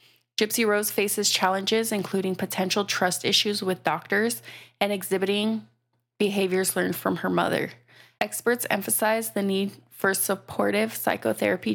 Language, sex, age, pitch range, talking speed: English, female, 20-39, 185-210 Hz, 125 wpm